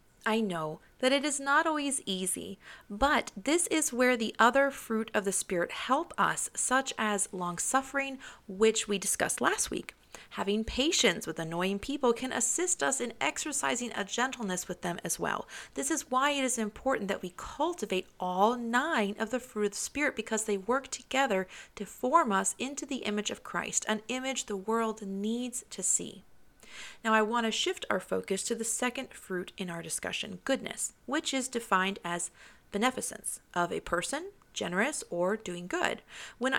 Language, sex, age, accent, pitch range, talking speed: English, female, 30-49, American, 200-265 Hz, 180 wpm